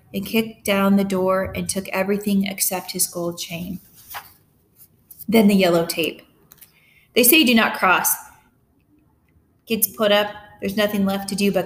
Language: English